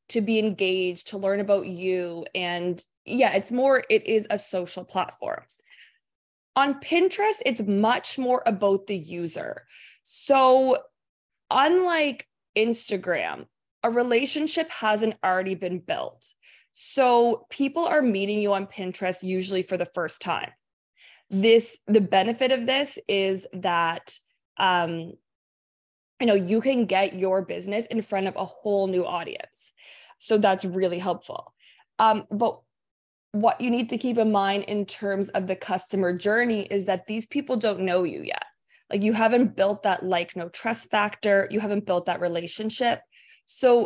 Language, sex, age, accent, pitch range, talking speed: English, female, 20-39, American, 185-240 Hz, 150 wpm